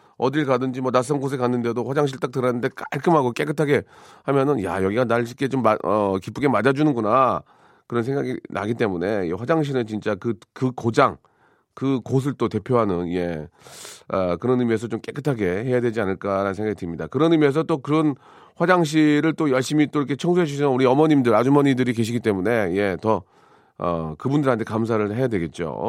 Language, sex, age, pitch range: Korean, male, 40-59, 110-145 Hz